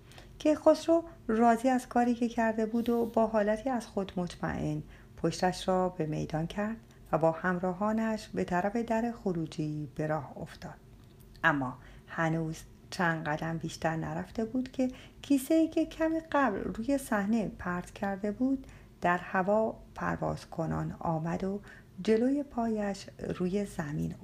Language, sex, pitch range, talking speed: Persian, female, 160-235 Hz, 135 wpm